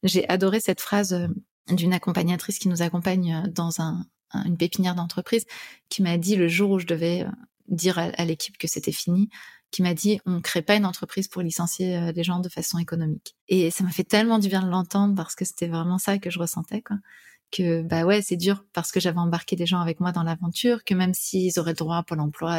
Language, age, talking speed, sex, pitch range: French, 30-49, 230 wpm, female, 170-200 Hz